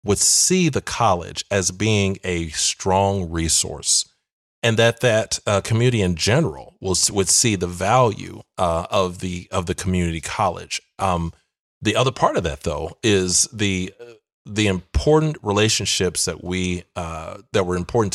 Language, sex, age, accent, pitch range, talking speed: English, male, 40-59, American, 90-115 Hz, 150 wpm